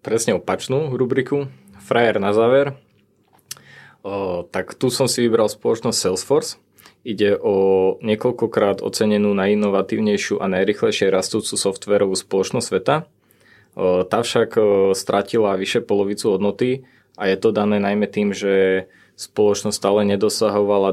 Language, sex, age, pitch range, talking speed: Czech, male, 20-39, 95-105 Hz, 125 wpm